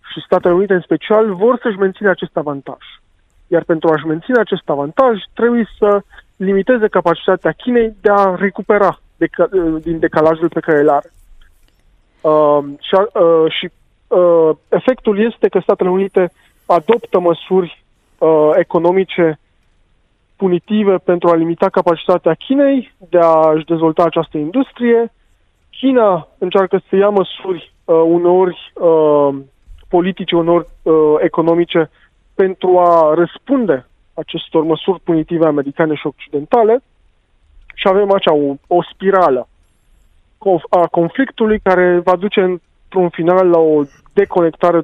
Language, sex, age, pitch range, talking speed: Romanian, male, 20-39, 155-195 Hz, 115 wpm